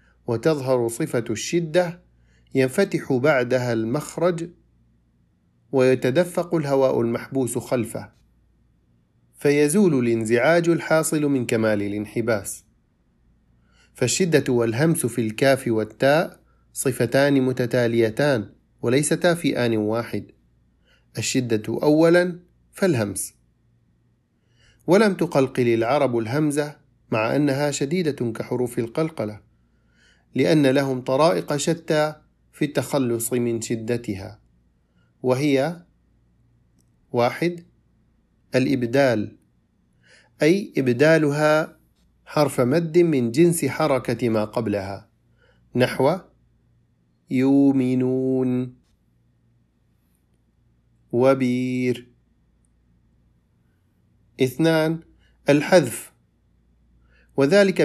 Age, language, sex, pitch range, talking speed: 40-59, Arabic, male, 110-150 Hz, 65 wpm